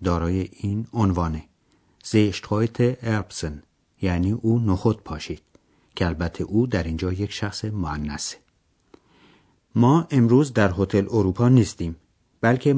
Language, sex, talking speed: Persian, male, 115 wpm